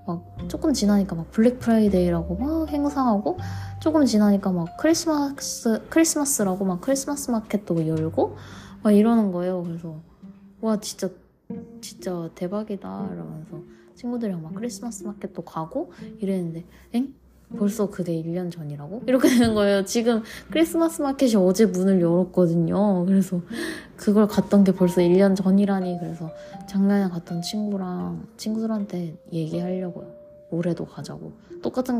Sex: female